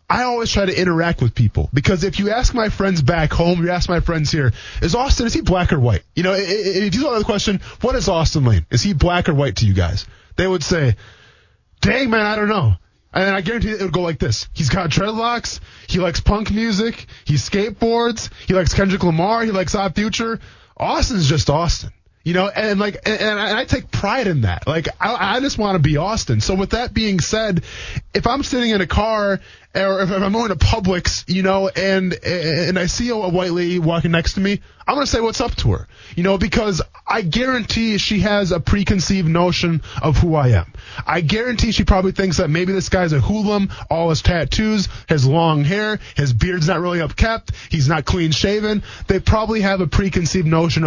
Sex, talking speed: male, 215 wpm